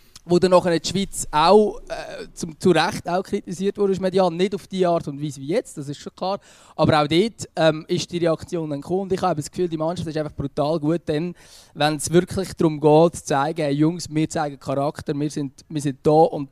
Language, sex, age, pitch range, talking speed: German, male, 20-39, 160-195 Hz, 235 wpm